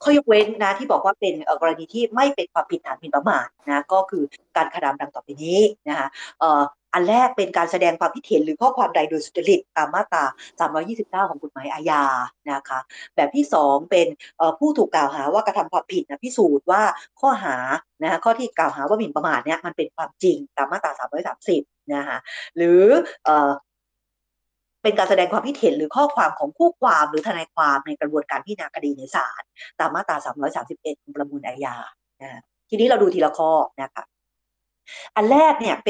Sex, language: female, Thai